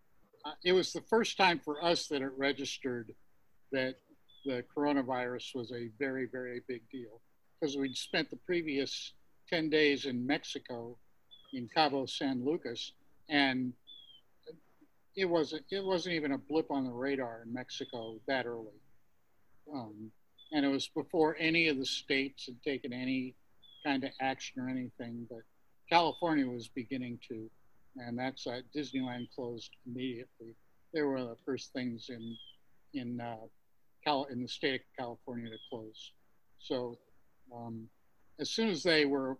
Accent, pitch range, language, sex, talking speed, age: American, 120-145 Hz, English, male, 155 wpm, 60-79